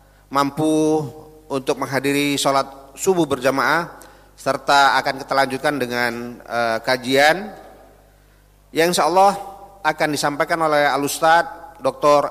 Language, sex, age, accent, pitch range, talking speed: Indonesian, male, 40-59, native, 145-170 Hz, 95 wpm